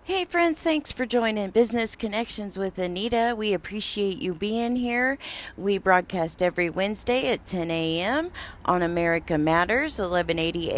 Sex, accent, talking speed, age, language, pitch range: female, American, 140 wpm, 40-59, English, 185-230 Hz